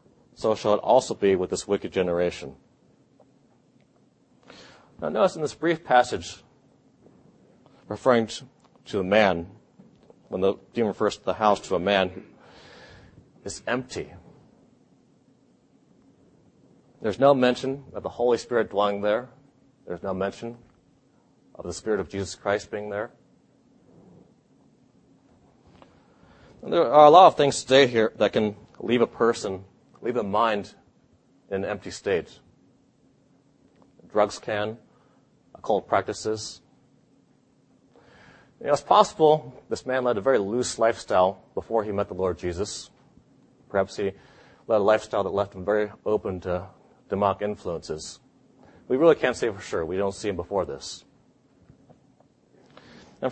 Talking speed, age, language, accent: 135 wpm, 40-59, English, American